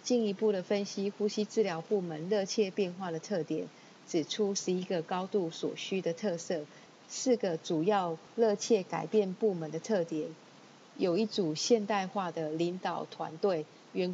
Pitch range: 165-210 Hz